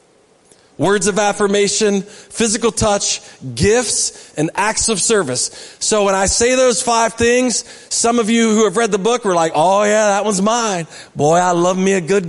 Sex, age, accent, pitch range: male, 30-49, American, 180-230 Hz